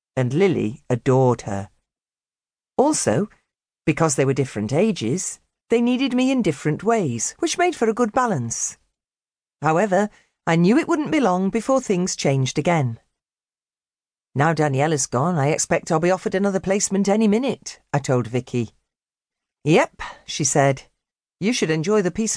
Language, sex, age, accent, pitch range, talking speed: English, female, 40-59, British, 145-225 Hz, 155 wpm